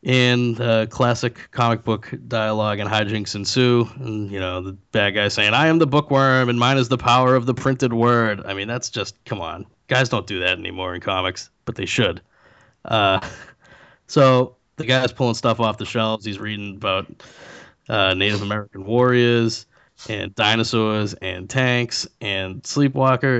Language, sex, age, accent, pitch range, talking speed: English, male, 20-39, American, 105-125 Hz, 170 wpm